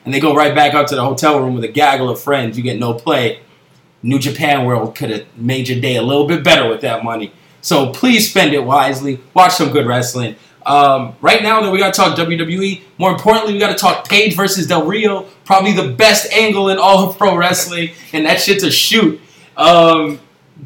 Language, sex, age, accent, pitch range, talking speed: English, male, 20-39, American, 145-190 Hz, 225 wpm